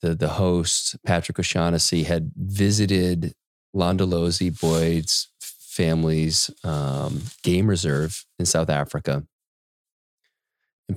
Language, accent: English, American